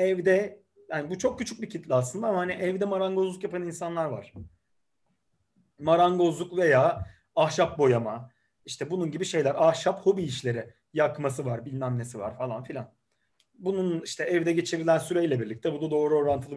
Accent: native